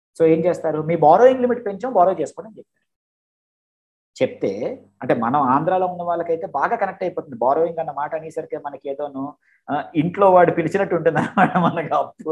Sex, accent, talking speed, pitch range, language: male, native, 155 wpm, 125-190 Hz, Telugu